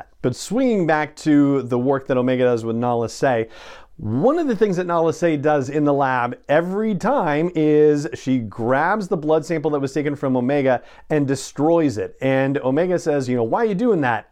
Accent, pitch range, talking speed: American, 120-150 Hz, 205 wpm